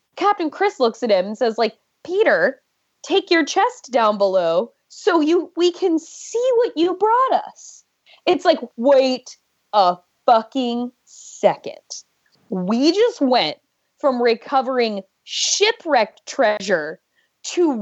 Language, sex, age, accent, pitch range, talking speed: English, female, 20-39, American, 240-355 Hz, 125 wpm